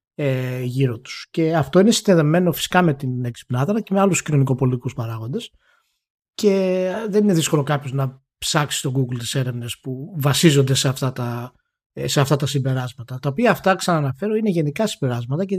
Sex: male